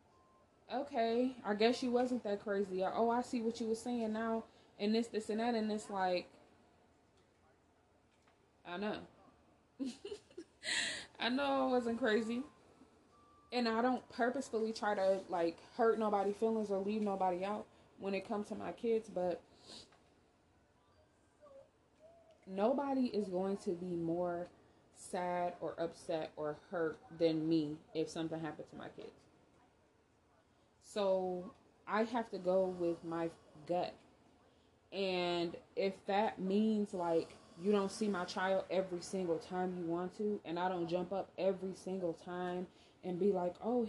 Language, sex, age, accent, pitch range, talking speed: English, female, 20-39, American, 180-230 Hz, 145 wpm